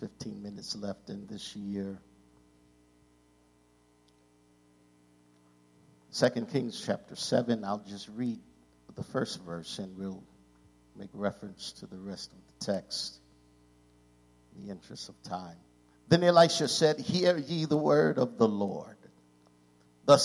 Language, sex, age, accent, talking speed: English, male, 50-69, American, 125 wpm